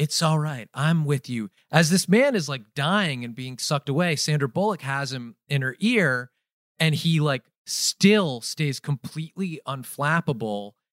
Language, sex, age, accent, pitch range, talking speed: English, male, 30-49, American, 145-210 Hz, 165 wpm